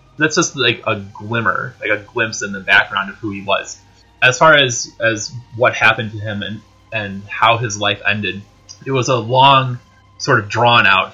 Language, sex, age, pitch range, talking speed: English, male, 20-39, 100-125 Hz, 200 wpm